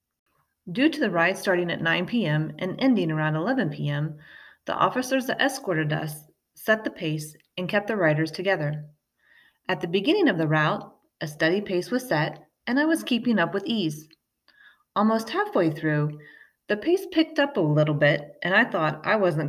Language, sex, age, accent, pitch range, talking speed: English, female, 30-49, American, 155-255 Hz, 180 wpm